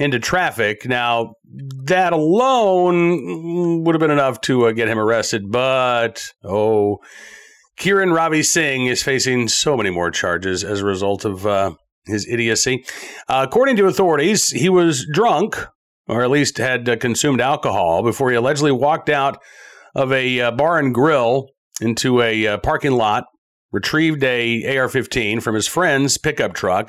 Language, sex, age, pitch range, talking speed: English, male, 40-59, 115-150 Hz, 155 wpm